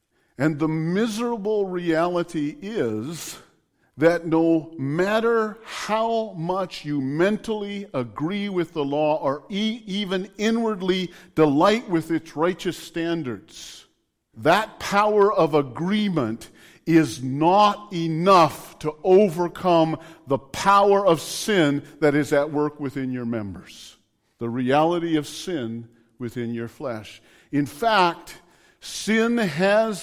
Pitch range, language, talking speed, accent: 150-205 Hz, English, 110 wpm, American